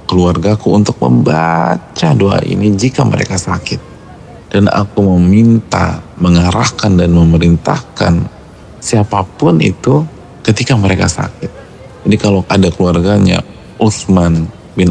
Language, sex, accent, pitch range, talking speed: Indonesian, male, native, 85-105 Hz, 100 wpm